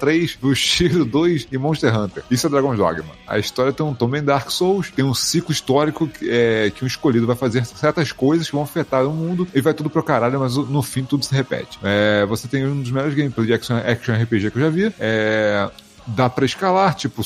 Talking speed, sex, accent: 230 wpm, male, Brazilian